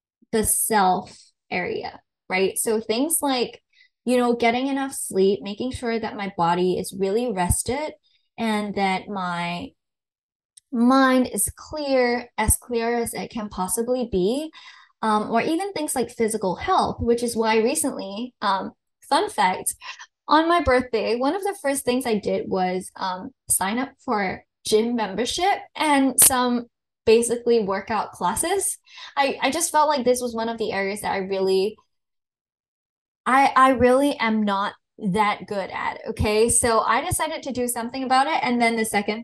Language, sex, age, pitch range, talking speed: English, female, 10-29, 200-260 Hz, 160 wpm